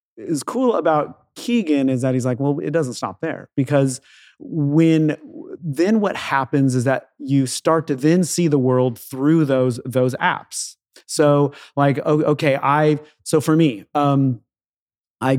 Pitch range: 125-155 Hz